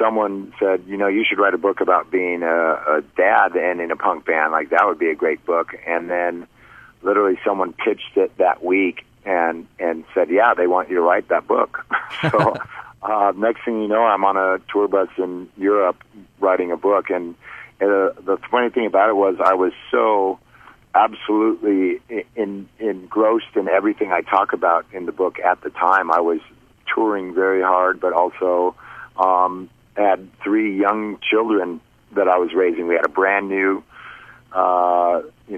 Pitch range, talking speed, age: 90-105 Hz, 185 wpm, 50-69